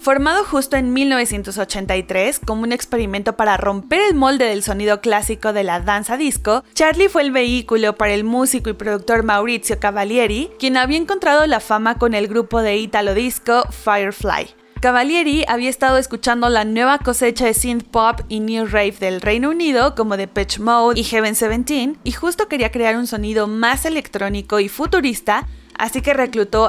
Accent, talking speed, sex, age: Mexican, 175 wpm, female, 20-39